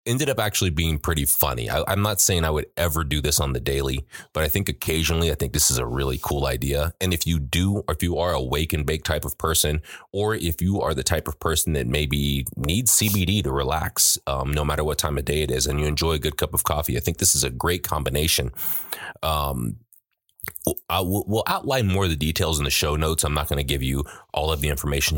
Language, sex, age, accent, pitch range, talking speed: English, male, 30-49, American, 75-90 Hz, 245 wpm